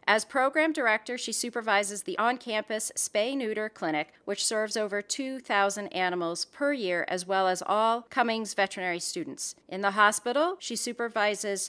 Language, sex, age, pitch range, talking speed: English, female, 40-59, 195-240 Hz, 145 wpm